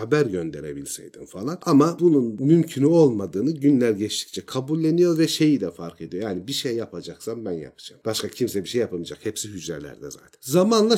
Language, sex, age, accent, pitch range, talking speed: Turkish, male, 40-59, native, 100-145 Hz, 165 wpm